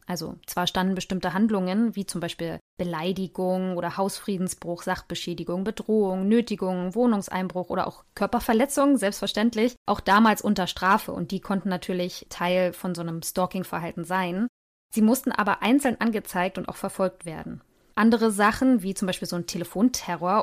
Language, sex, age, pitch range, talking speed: German, female, 20-39, 185-225 Hz, 145 wpm